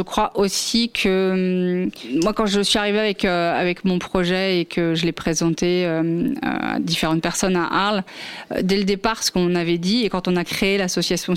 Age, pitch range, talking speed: 30-49, 185-225 Hz, 210 wpm